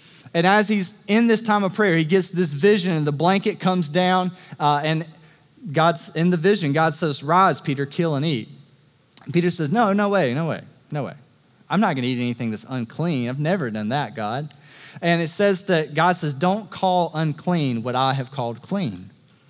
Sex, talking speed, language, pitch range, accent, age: male, 205 wpm, English, 150-200 Hz, American, 30-49